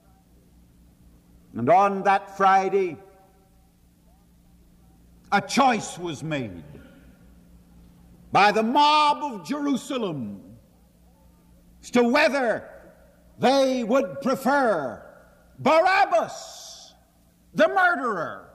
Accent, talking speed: American, 70 wpm